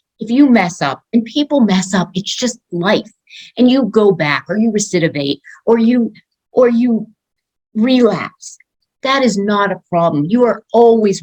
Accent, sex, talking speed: American, female, 165 wpm